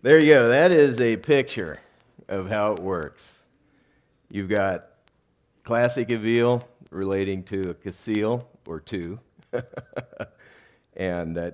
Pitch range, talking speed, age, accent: 85-110 Hz, 120 wpm, 50-69, American